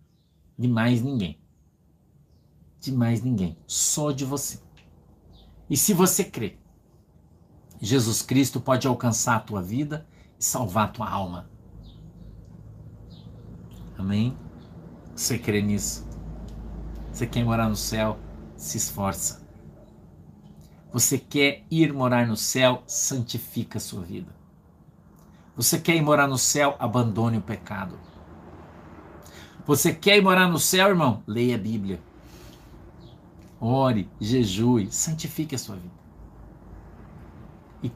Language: Portuguese